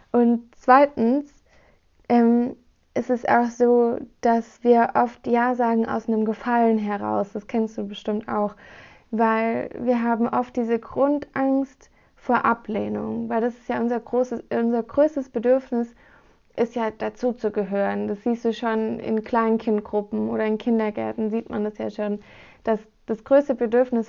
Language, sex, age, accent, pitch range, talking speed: German, female, 20-39, German, 220-240 Hz, 145 wpm